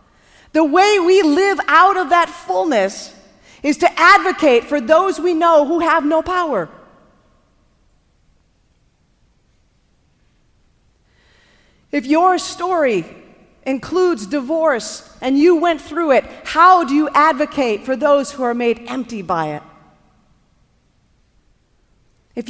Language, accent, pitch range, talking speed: English, American, 185-300 Hz, 110 wpm